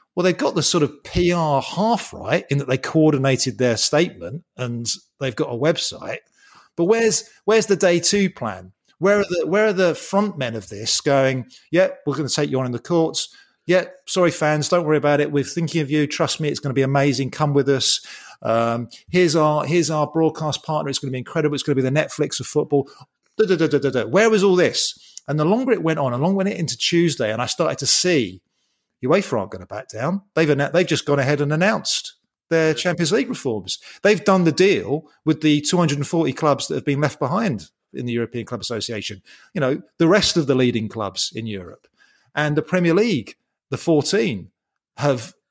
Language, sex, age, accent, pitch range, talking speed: English, male, 30-49, British, 140-185 Hz, 215 wpm